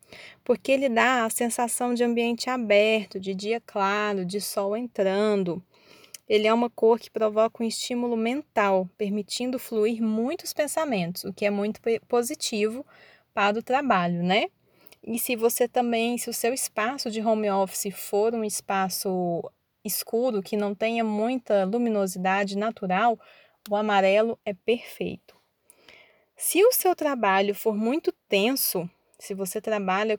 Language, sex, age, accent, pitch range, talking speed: Portuguese, female, 20-39, Brazilian, 200-245 Hz, 140 wpm